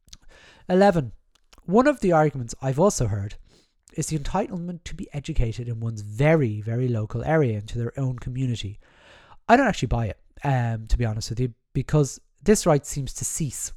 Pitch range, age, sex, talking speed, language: 110-160 Hz, 30-49, male, 180 wpm, English